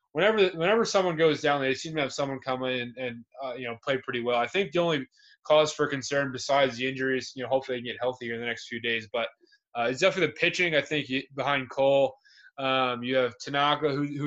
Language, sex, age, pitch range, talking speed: English, male, 20-39, 125-150 Hz, 240 wpm